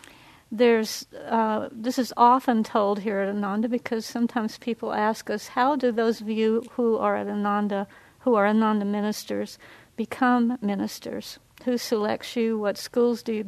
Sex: female